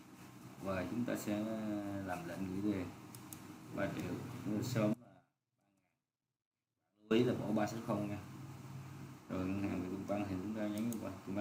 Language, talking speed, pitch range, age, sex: Vietnamese, 135 wpm, 90-120 Hz, 20-39, male